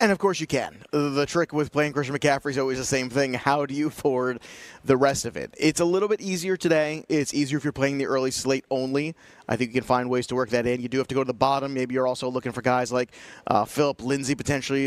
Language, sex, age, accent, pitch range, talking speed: English, male, 30-49, American, 125-150 Hz, 275 wpm